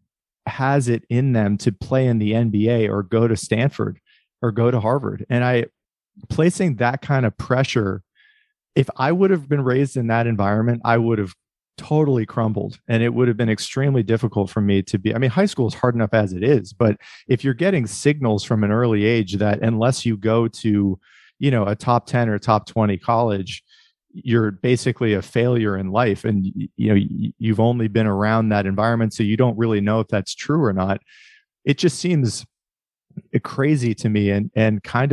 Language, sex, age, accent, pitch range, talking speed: English, male, 40-59, American, 105-125 Hz, 200 wpm